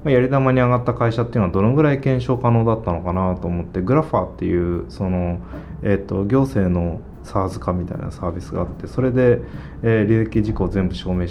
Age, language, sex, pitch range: 20-39, Japanese, male, 95-120 Hz